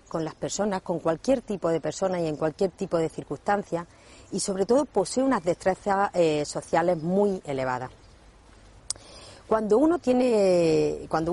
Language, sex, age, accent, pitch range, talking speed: Spanish, female, 40-59, Spanish, 155-215 Hz, 150 wpm